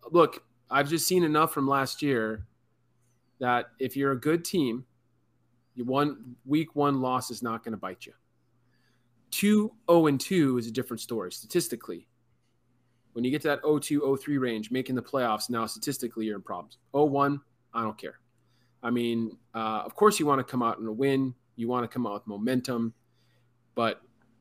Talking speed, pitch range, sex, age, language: 190 wpm, 120-140 Hz, male, 30-49, English